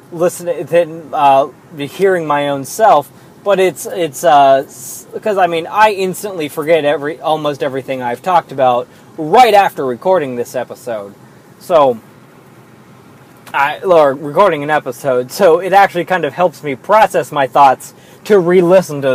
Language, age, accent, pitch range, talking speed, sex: English, 20-39, American, 145-200 Hz, 145 wpm, male